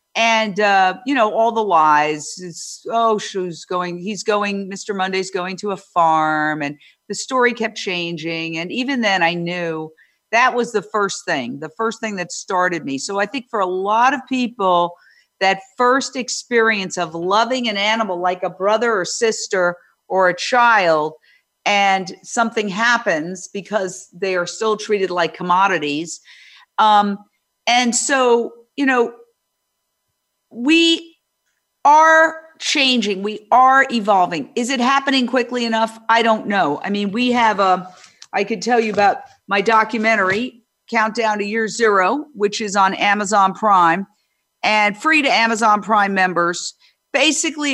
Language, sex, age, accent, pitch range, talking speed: English, female, 50-69, American, 185-240 Hz, 150 wpm